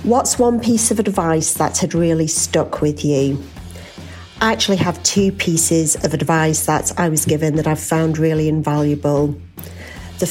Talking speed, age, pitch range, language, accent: 165 wpm, 40-59, 150-180 Hz, English, British